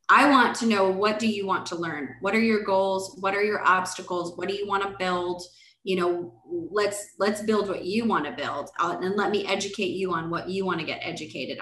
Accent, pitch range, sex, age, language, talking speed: American, 170-195 Hz, female, 20-39, English, 240 wpm